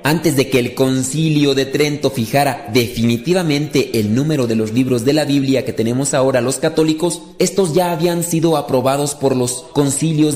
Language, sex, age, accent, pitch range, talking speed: Spanish, male, 40-59, Mexican, 130-170 Hz, 175 wpm